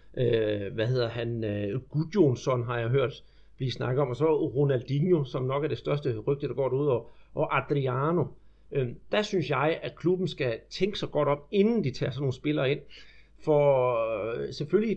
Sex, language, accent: male, Danish, native